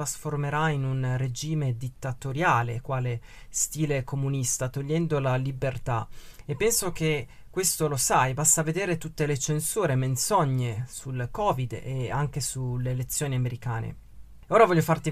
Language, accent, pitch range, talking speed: Italian, native, 125-160 Hz, 135 wpm